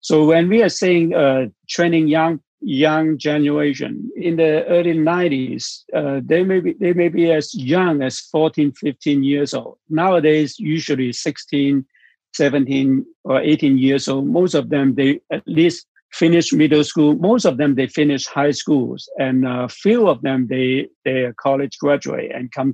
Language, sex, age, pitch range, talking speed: English, male, 60-79, 135-165 Hz, 165 wpm